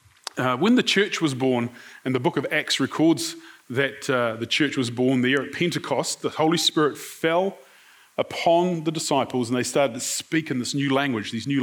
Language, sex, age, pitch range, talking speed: English, male, 30-49, 135-185 Hz, 200 wpm